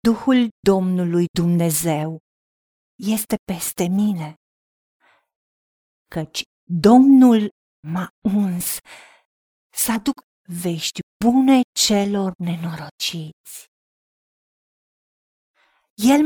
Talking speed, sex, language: 65 wpm, female, Romanian